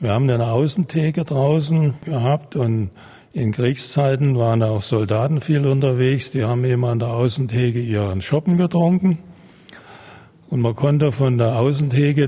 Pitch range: 125-150 Hz